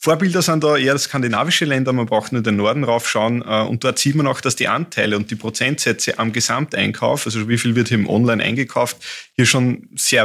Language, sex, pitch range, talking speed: German, male, 110-135 Hz, 210 wpm